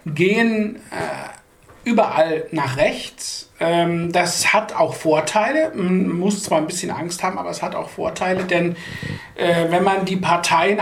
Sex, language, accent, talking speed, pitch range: male, English, German, 155 wpm, 165-205 Hz